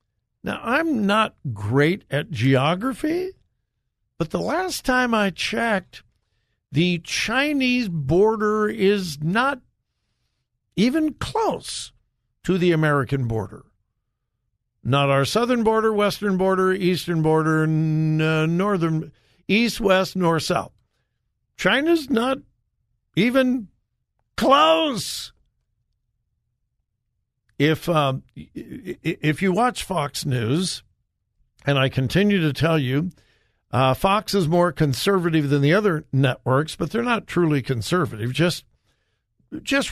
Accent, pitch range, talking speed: American, 130-195 Hz, 105 wpm